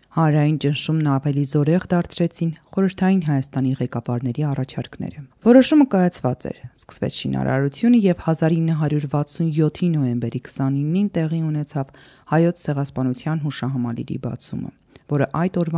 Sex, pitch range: female, 130-170 Hz